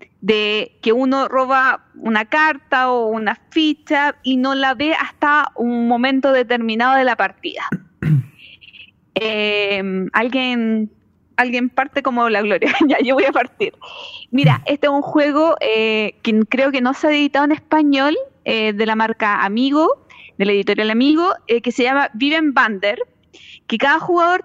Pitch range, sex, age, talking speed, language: 240-330 Hz, female, 20-39, 160 wpm, Spanish